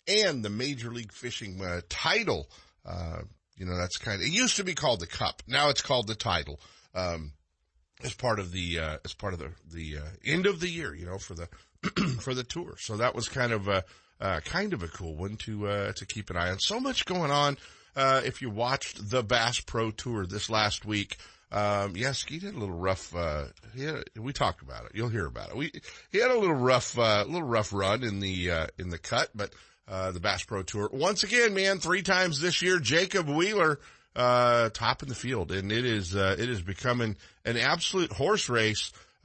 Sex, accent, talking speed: male, American, 230 wpm